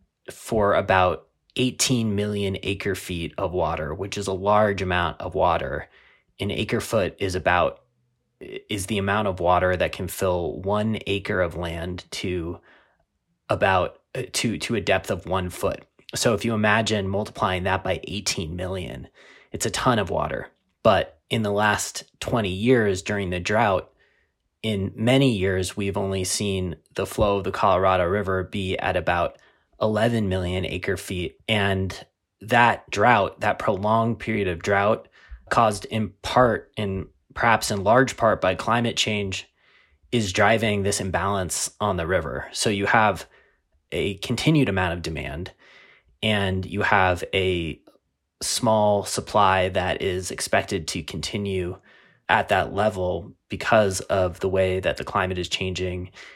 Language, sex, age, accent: English, male, 20-39, American